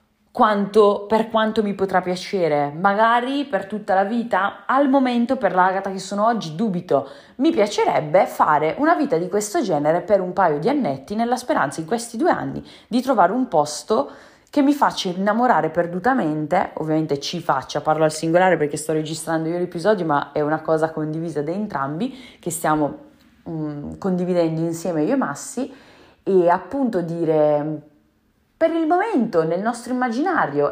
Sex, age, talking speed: female, 20-39, 160 wpm